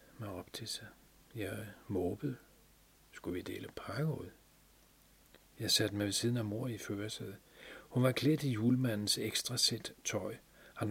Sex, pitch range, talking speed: male, 95-120 Hz, 155 wpm